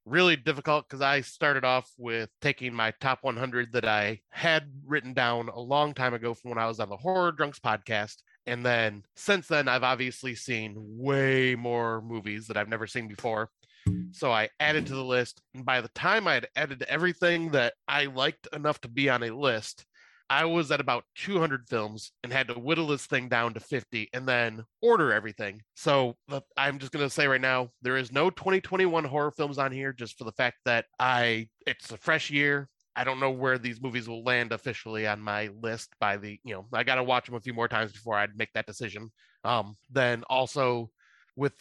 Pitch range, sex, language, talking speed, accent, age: 110-140 Hz, male, English, 210 wpm, American, 20-39